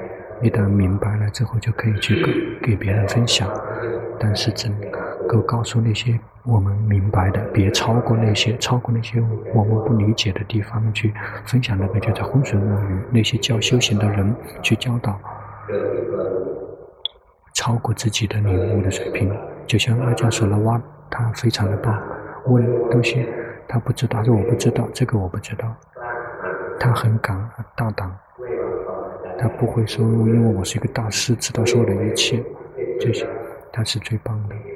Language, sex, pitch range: Chinese, male, 105-120 Hz